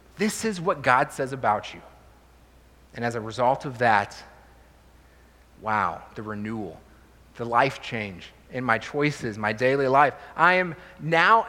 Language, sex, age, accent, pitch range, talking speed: English, male, 30-49, American, 120-175 Hz, 145 wpm